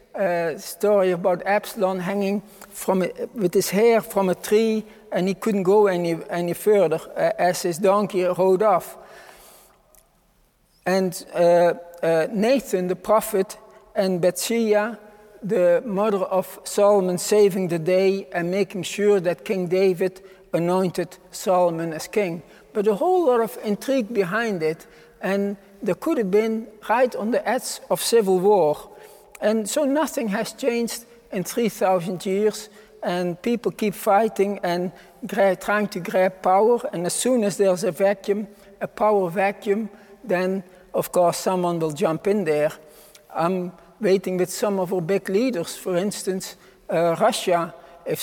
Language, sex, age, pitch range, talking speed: English, male, 60-79, 180-210 Hz, 150 wpm